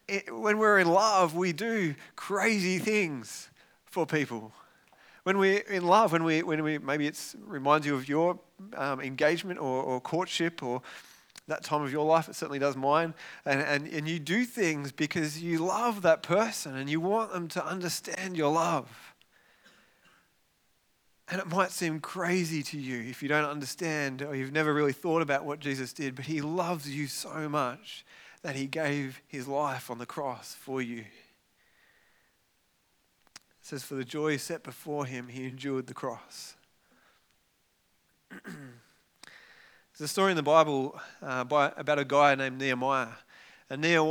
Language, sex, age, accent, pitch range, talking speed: English, male, 30-49, Australian, 135-170 Hz, 165 wpm